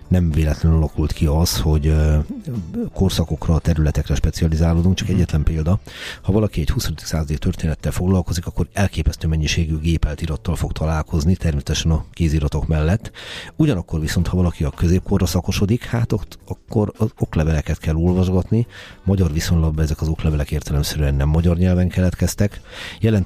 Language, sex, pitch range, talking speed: Hungarian, male, 75-90 Hz, 140 wpm